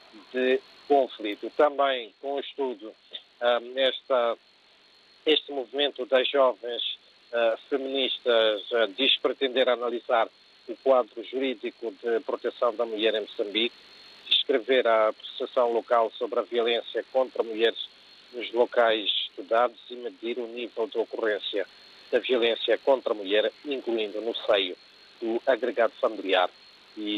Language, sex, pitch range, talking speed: Portuguese, male, 110-130 Hz, 130 wpm